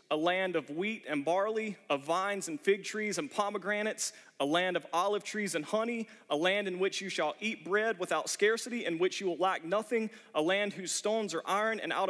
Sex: male